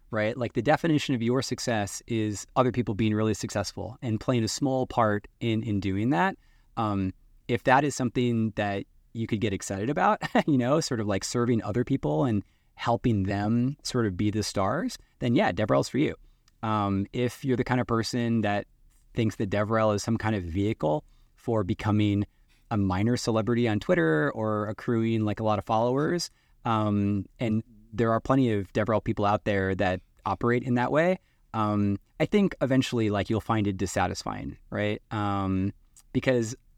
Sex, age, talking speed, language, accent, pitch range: male, 20-39, 180 wpm, English, American, 100-120 Hz